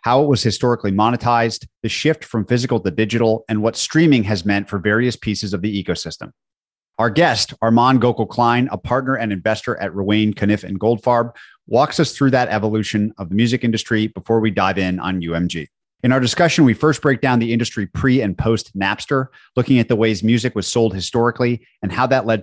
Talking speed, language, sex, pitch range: 200 wpm, English, male, 100-125 Hz